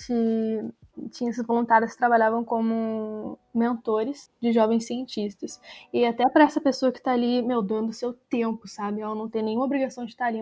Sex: female